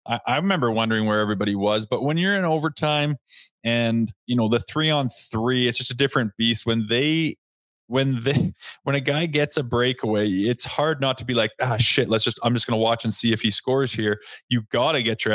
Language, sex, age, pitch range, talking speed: English, male, 20-39, 110-125 Hz, 230 wpm